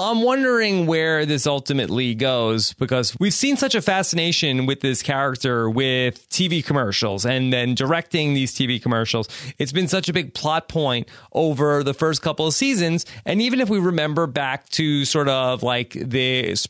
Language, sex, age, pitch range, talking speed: English, male, 30-49, 125-155 Hz, 175 wpm